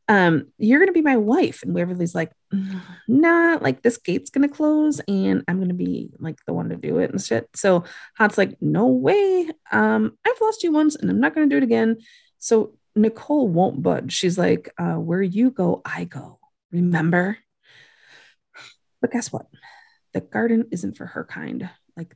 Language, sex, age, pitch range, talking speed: English, female, 20-39, 160-255 Hz, 180 wpm